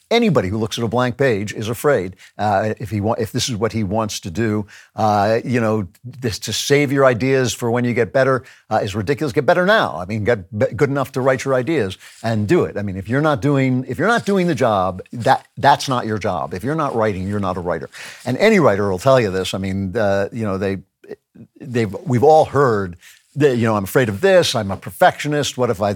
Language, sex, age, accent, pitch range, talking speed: English, male, 50-69, American, 105-135 Hz, 250 wpm